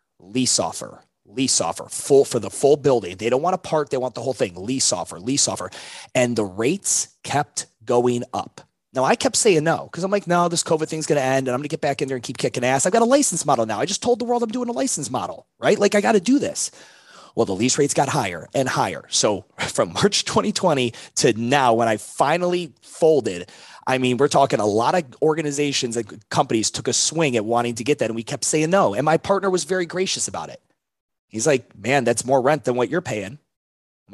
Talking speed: 245 wpm